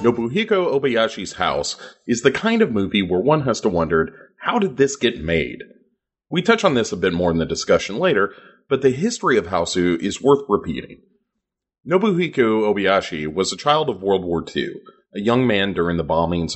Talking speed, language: 190 wpm, English